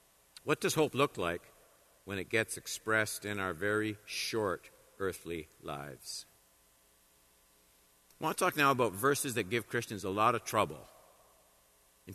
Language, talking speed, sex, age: English, 150 wpm, male, 60-79